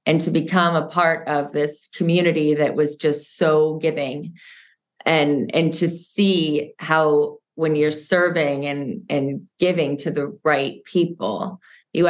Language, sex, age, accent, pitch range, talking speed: English, female, 20-39, American, 145-165 Hz, 145 wpm